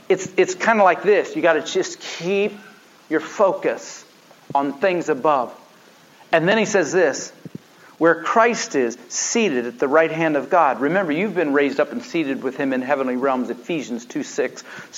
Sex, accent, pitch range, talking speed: male, American, 155-220 Hz, 180 wpm